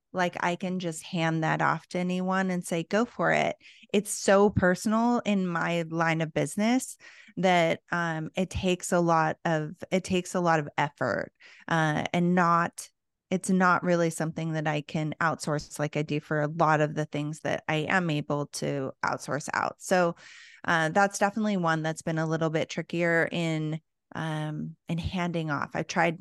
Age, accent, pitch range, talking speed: 20-39, American, 160-185 Hz, 185 wpm